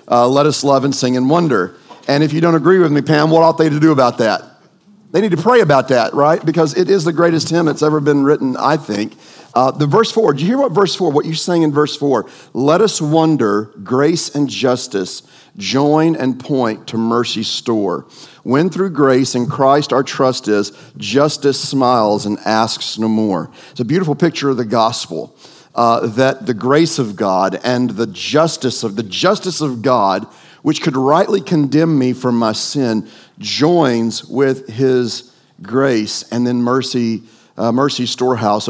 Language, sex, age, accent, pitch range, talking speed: English, male, 40-59, American, 115-150 Hz, 190 wpm